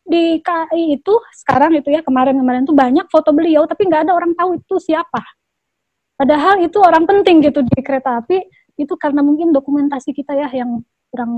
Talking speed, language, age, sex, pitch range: 180 wpm, Indonesian, 20-39, female, 260-320 Hz